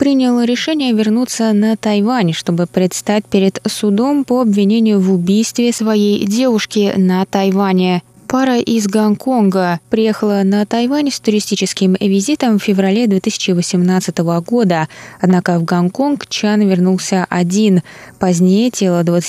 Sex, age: female, 20-39